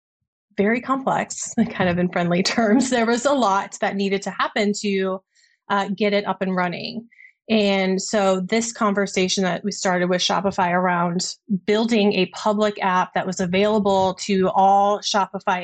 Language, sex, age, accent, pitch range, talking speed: English, female, 30-49, American, 190-220 Hz, 160 wpm